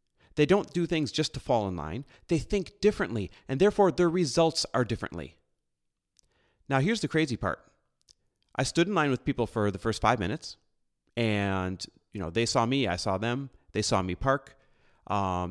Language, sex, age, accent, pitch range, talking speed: English, male, 30-49, American, 105-170 Hz, 185 wpm